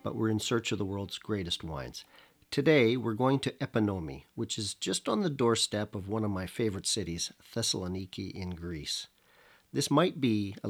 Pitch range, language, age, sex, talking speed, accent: 95-115 Hz, English, 50-69, male, 185 wpm, American